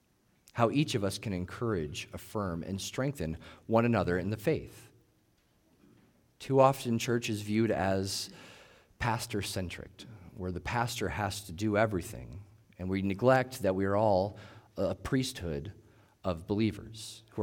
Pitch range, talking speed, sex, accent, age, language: 95-115 Hz, 140 wpm, male, American, 40-59, English